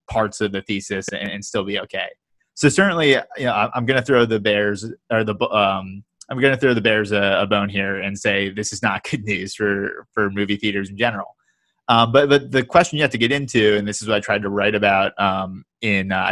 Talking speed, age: 250 wpm, 20-39